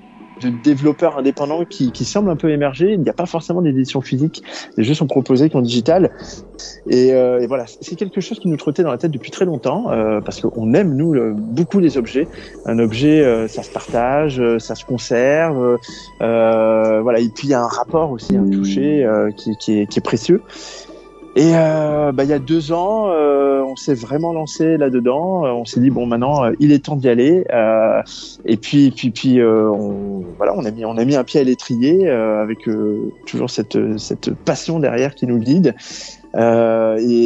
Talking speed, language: 210 wpm, French